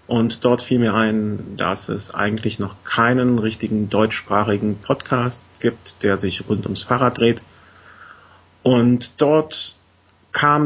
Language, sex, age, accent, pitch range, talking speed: German, male, 40-59, German, 100-120 Hz, 130 wpm